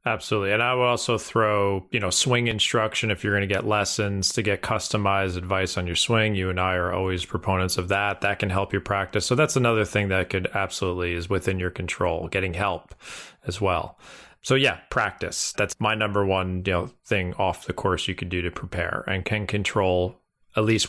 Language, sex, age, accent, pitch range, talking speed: English, male, 30-49, American, 95-110 Hz, 215 wpm